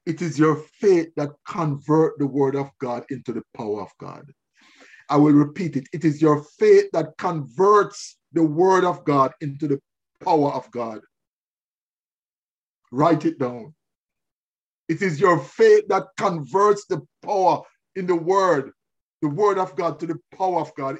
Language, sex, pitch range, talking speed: English, male, 150-195 Hz, 165 wpm